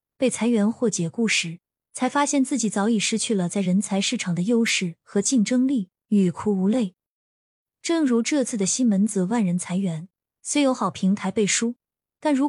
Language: Chinese